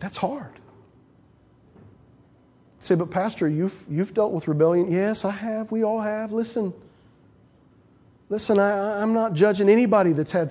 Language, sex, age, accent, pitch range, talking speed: English, male, 40-59, American, 160-210 Hz, 150 wpm